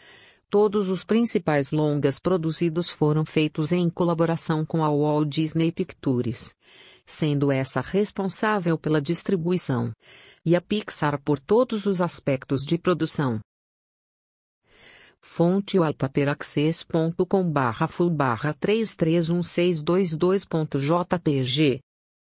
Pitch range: 150-185 Hz